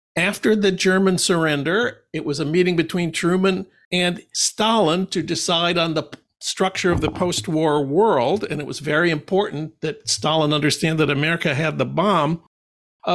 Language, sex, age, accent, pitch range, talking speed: English, male, 60-79, American, 160-195 Hz, 160 wpm